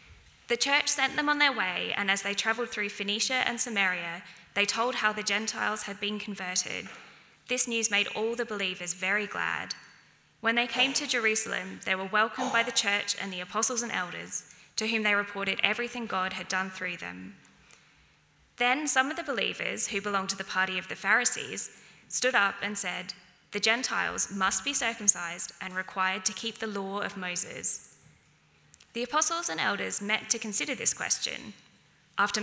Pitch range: 195-235 Hz